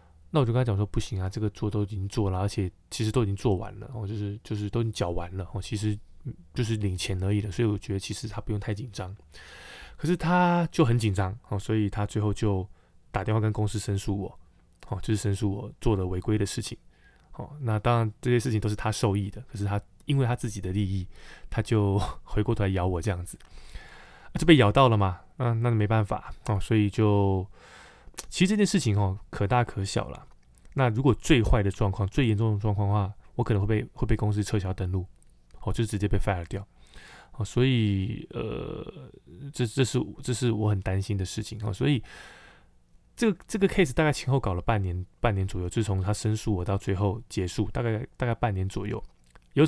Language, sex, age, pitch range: Chinese, male, 20-39, 100-120 Hz